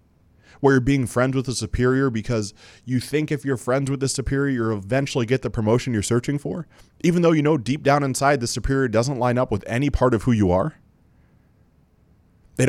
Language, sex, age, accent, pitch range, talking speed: English, male, 20-39, American, 105-140 Hz, 210 wpm